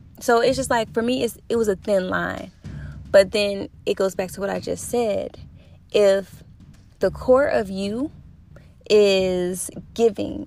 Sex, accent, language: female, American, English